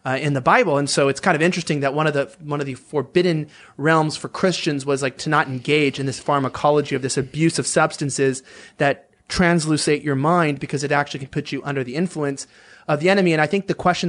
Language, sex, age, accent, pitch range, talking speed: English, male, 30-49, American, 140-165 Hz, 235 wpm